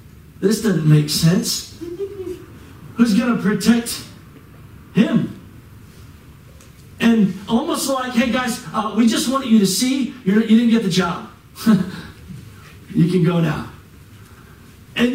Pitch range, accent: 130-195 Hz, American